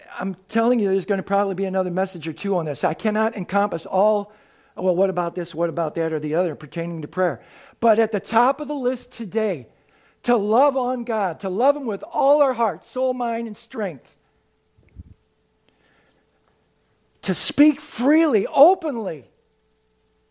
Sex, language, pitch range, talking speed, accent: male, English, 190-265 Hz, 170 wpm, American